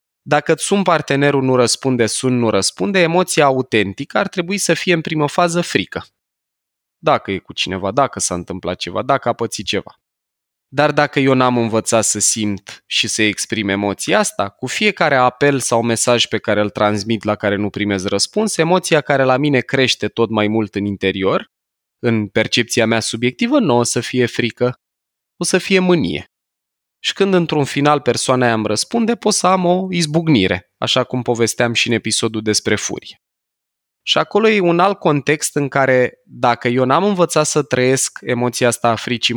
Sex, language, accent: male, Romanian, native